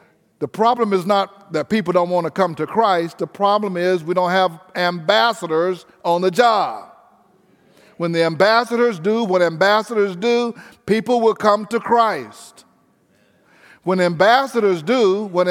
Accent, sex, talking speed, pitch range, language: American, male, 145 wpm, 195-250 Hz, English